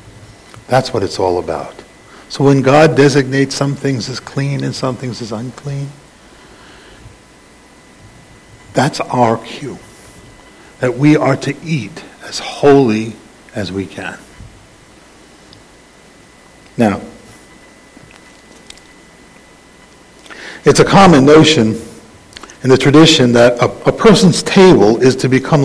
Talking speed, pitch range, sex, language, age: 110 wpm, 115-145 Hz, male, English, 50-69